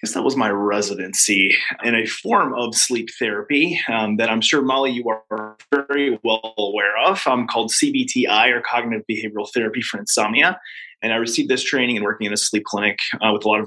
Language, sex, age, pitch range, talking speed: English, male, 20-39, 110-135 Hz, 215 wpm